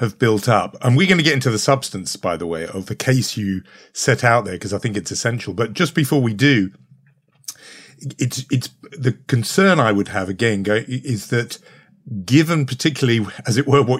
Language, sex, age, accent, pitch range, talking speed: English, male, 50-69, British, 105-140 Hz, 200 wpm